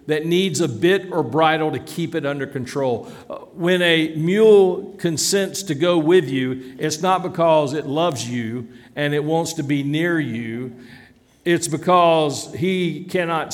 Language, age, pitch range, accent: English, 60-79, 125-165 Hz, American